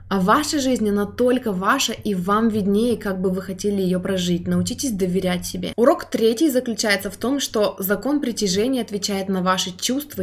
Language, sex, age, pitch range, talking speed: Russian, female, 20-39, 185-230 Hz, 175 wpm